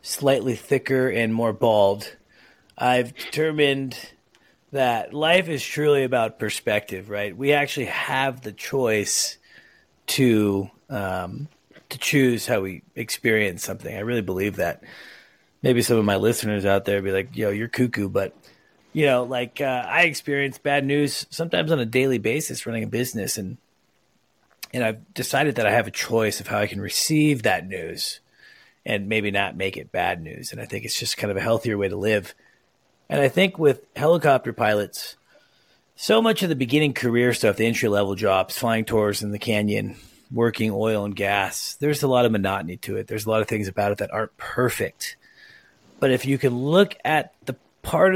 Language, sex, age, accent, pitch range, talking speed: English, male, 30-49, American, 105-140 Hz, 180 wpm